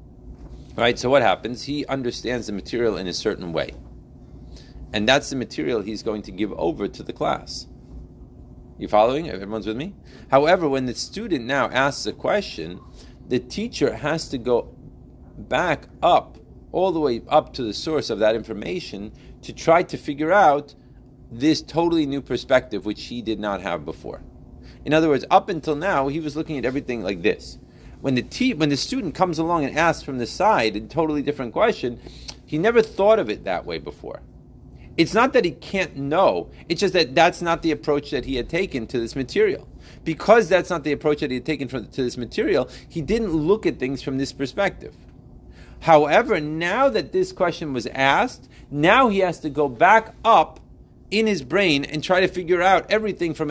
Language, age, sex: English, 40-59, male